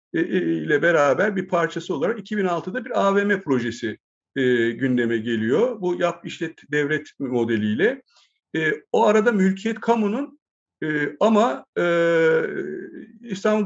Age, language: 60-79, Turkish